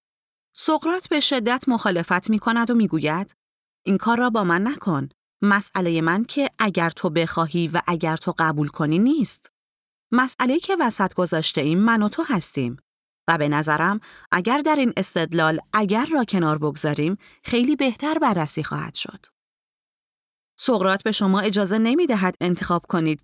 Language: Persian